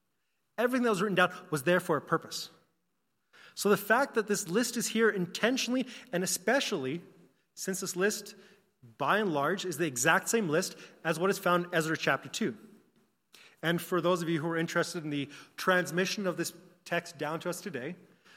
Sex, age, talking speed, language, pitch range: male, 30-49, 190 wpm, English, 165-200 Hz